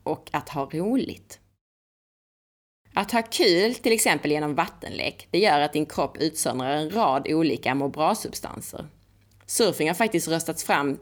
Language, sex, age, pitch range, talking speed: Swedish, female, 20-39, 135-180 Hz, 140 wpm